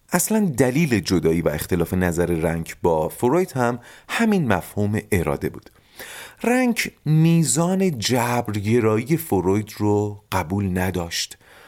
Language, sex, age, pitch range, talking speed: Persian, male, 30-49, 90-135 Hz, 110 wpm